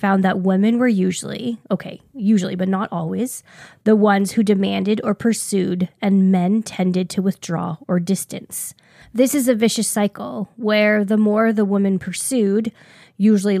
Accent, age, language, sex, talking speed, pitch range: American, 20-39, English, female, 155 wpm, 185-215 Hz